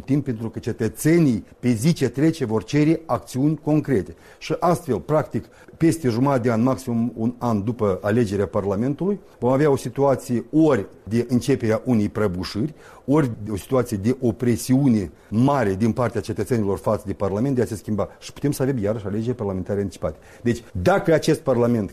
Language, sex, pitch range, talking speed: Romanian, male, 105-135 Hz, 170 wpm